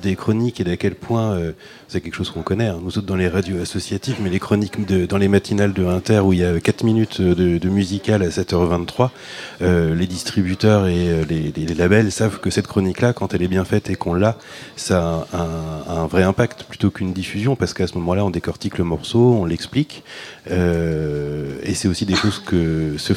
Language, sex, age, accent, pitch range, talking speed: French, male, 30-49, French, 85-105 Hz, 220 wpm